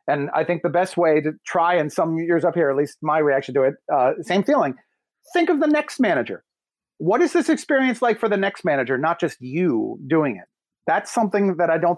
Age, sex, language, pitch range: 40-59, male, English, 150-210 Hz